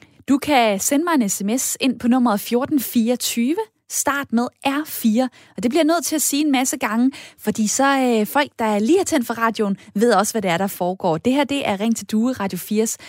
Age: 20-39